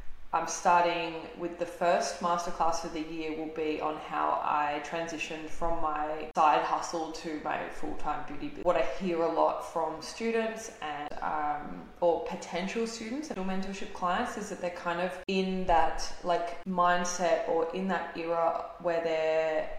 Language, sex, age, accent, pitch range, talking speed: English, female, 20-39, Australian, 160-175 Hz, 165 wpm